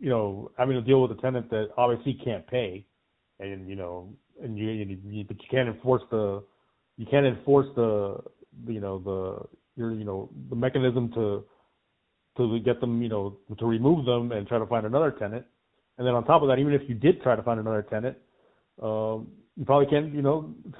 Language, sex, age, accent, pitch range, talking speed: English, male, 30-49, American, 105-135 Hz, 200 wpm